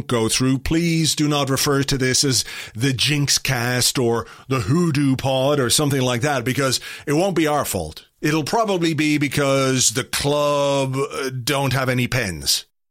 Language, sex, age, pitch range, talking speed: English, male, 40-59, 125-155 Hz, 165 wpm